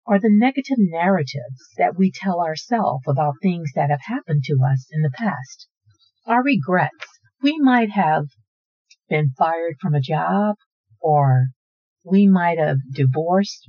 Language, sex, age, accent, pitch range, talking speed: English, female, 50-69, American, 150-225 Hz, 145 wpm